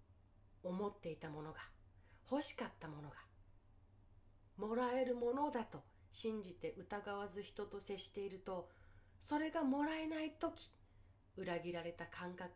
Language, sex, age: Japanese, female, 40-59